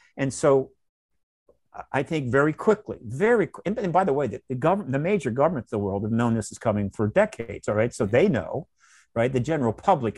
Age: 50-69